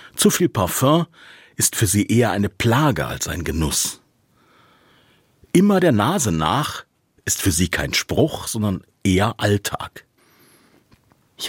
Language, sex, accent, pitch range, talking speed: German, male, German, 95-140 Hz, 130 wpm